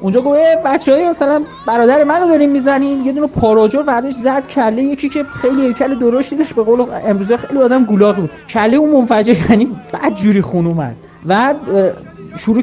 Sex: male